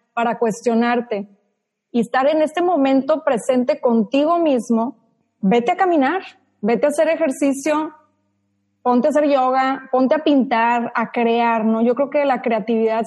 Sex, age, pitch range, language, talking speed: female, 20-39, 225-275 Hz, Spanish, 150 wpm